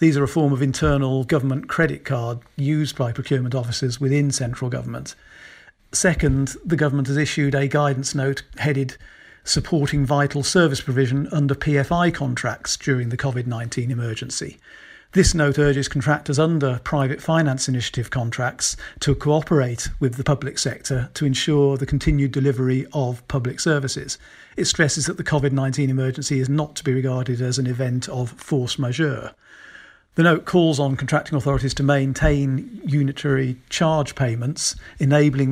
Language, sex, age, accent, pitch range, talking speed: English, male, 50-69, British, 130-150 Hz, 150 wpm